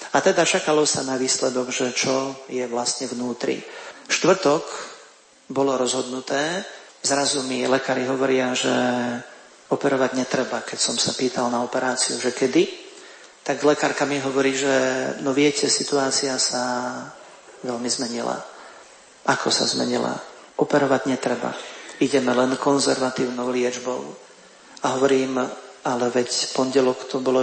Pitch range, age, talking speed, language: 125-135 Hz, 40-59, 120 wpm, Slovak